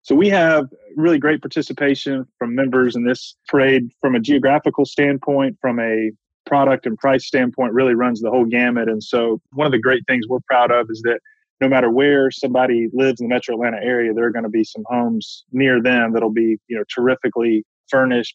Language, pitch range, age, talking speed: English, 115-135 Hz, 20-39, 205 wpm